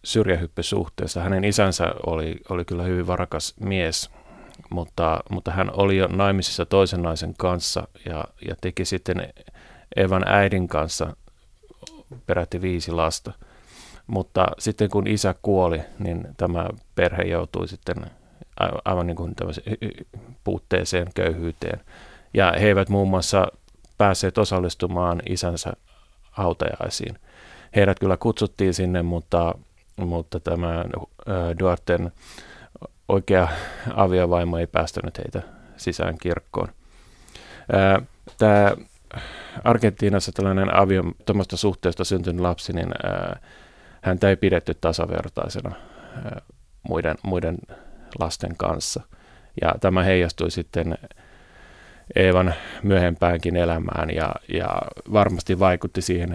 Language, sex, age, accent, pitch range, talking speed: Finnish, male, 30-49, native, 85-100 Hz, 100 wpm